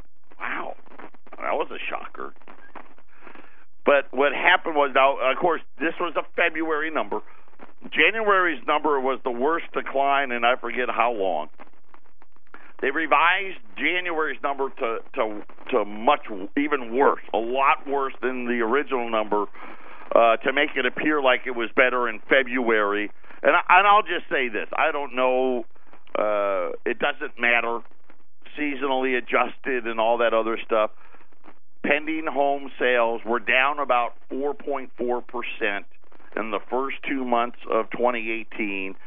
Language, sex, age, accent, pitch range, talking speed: English, male, 50-69, American, 115-145 Hz, 140 wpm